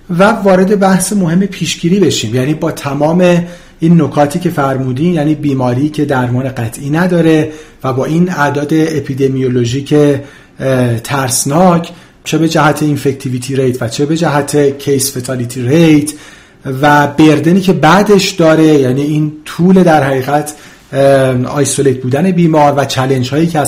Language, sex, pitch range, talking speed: Persian, male, 140-165 Hz, 140 wpm